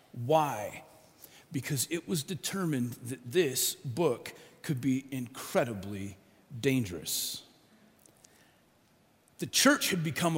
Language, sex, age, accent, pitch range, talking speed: English, male, 40-59, American, 135-185 Hz, 95 wpm